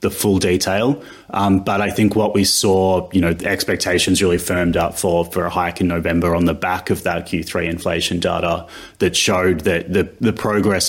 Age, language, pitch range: 30-49, English, 90-105 Hz